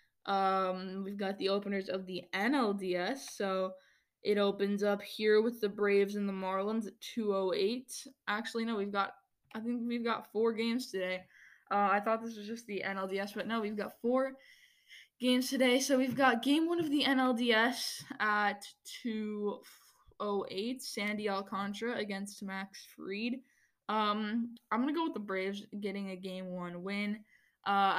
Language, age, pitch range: English, 10-29, 195-225 Hz